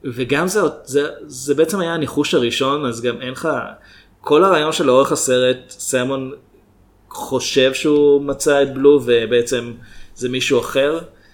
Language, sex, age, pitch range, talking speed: Hebrew, male, 20-39, 115-145 Hz, 140 wpm